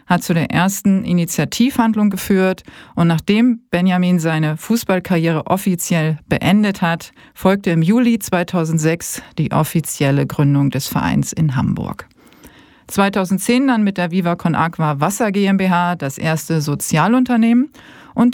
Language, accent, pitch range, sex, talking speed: German, German, 165-210 Hz, female, 125 wpm